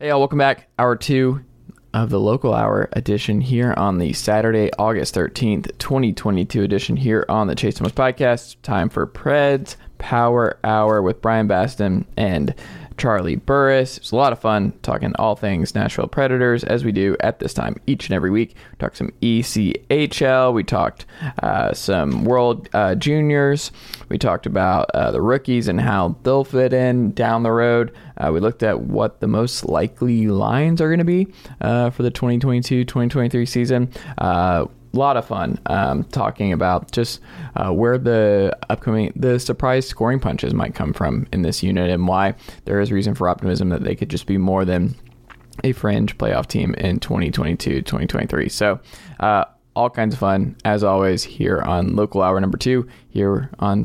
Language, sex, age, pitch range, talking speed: English, male, 20-39, 100-130 Hz, 175 wpm